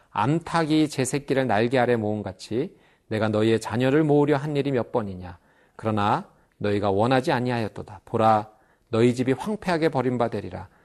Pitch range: 110-155 Hz